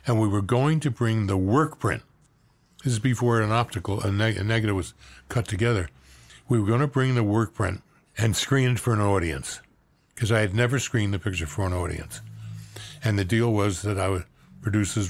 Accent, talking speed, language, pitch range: American, 200 wpm, English, 100-120 Hz